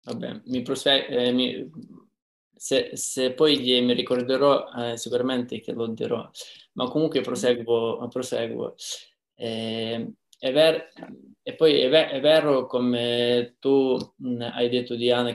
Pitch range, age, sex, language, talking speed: 120-140 Hz, 20-39, male, Italian, 135 wpm